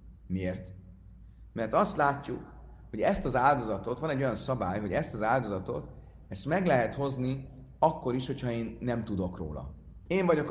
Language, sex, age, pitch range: Hungarian, male, 30-49, 90-140 Hz